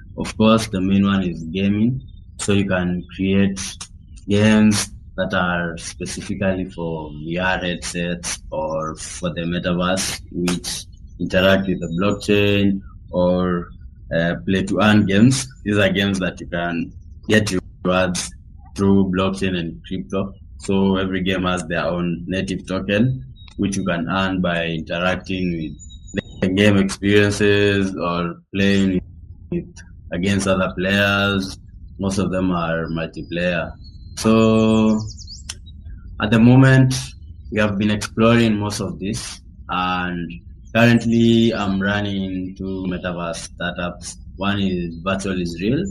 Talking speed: 130 wpm